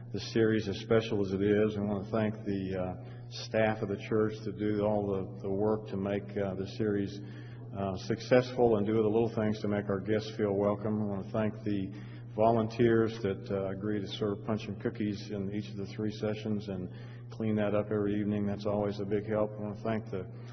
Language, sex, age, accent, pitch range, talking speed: French, male, 40-59, American, 100-115 Hz, 225 wpm